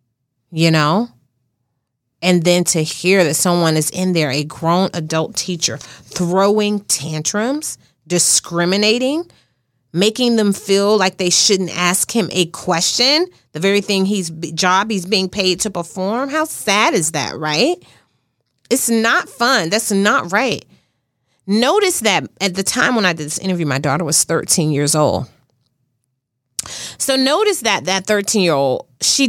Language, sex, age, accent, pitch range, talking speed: English, female, 30-49, American, 150-210 Hz, 150 wpm